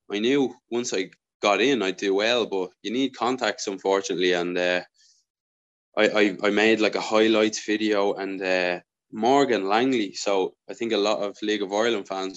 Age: 20-39